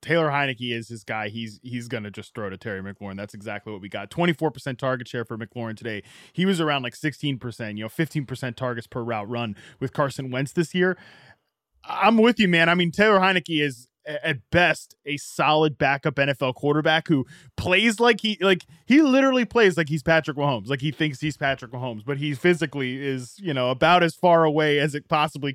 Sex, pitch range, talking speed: male, 125-165 Hz, 210 wpm